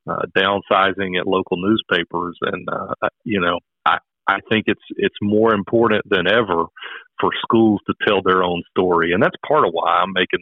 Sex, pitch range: male, 90-110 Hz